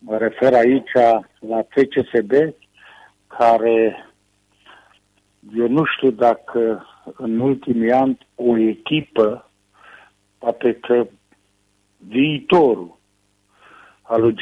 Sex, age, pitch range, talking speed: male, 60-79, 110-130 Hz, 75 wpm